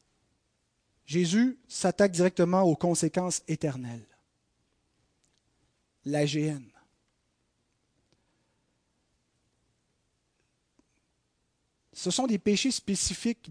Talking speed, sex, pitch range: 60 wpm, male, 160-220 Hz